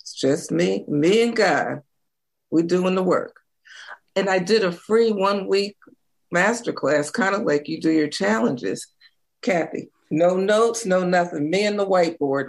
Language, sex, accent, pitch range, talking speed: English, female, American, 150-195 Hz, 155 wpm